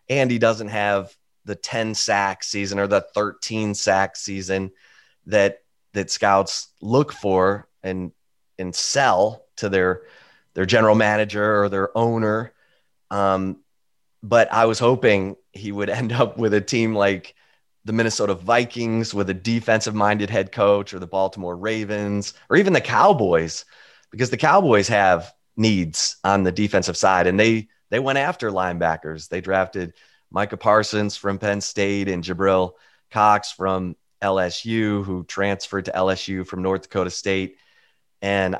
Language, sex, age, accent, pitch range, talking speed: English, male, 30-49, American, 95-110 Hz, 150 wpm